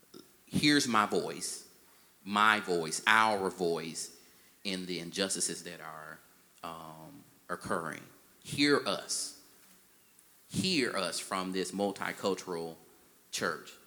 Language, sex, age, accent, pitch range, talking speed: English, male, 30-49, American, 85-110 Hz, 95 wpm